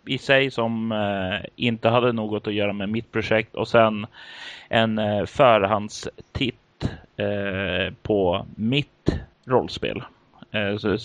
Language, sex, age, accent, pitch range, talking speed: Swedish, male, 30-49, native, 105-120 Hz, 120 wpm